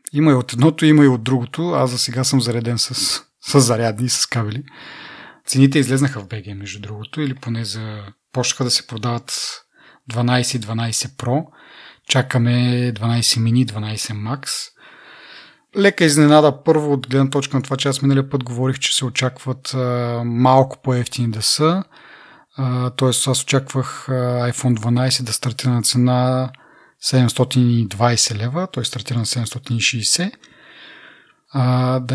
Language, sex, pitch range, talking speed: Bulgarian, male, 120-140 Hz, 135 wpm